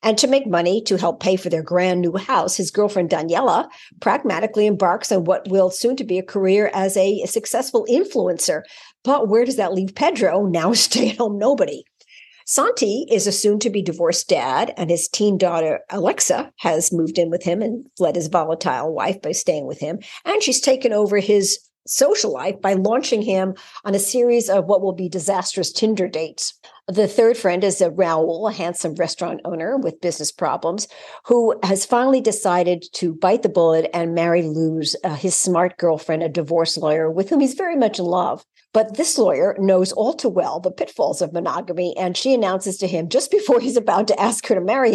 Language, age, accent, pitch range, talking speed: English, 50-69, American, 175-230 Hz, 195 wpm